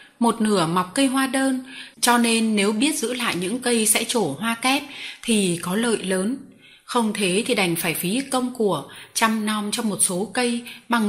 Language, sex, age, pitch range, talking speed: Vietnamese, female, 20-39, 185-240 Hz, 200 wpm